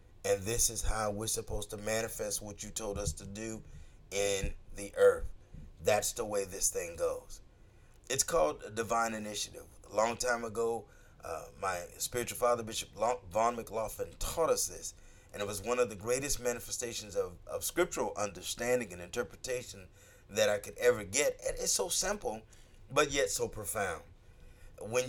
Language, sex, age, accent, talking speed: English, male, 30-49, American, 165 wpm